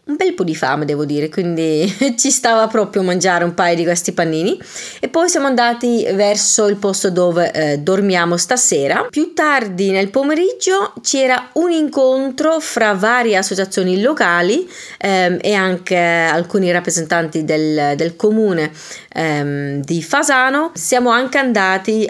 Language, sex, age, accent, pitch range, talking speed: Italian, female, 30-49, native, 180-240 Hz, 145 wpm